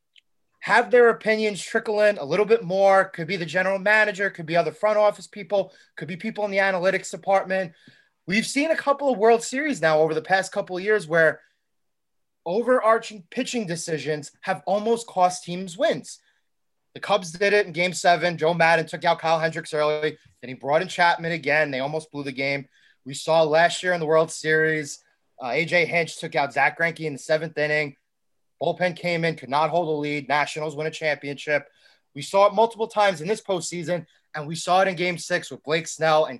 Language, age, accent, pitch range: English, 30-49, American, 155-200 Hz